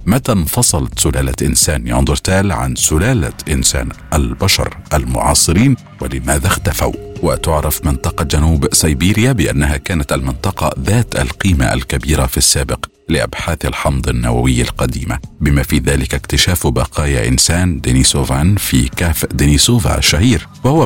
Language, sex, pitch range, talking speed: Arabic, male, 65-85 Hz, 115 wpm